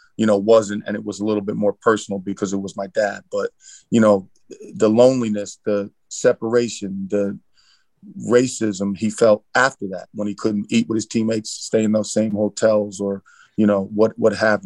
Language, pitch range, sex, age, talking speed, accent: English, 100-115 Hz, male, 40-59, 190 wpm, American